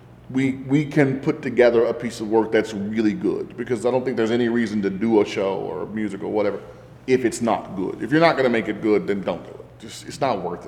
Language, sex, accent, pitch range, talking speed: English, male, American, 105-125 Hz, 260 wpm